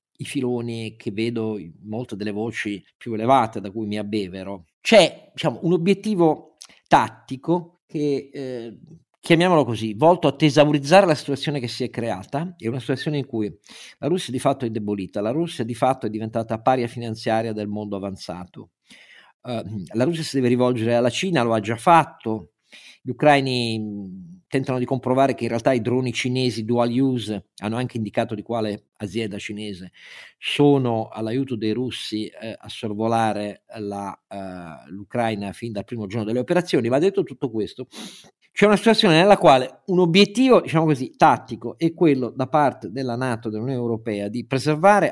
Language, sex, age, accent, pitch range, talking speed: Italian, male, 50-69, native, 110-145 Hz, 165 wpm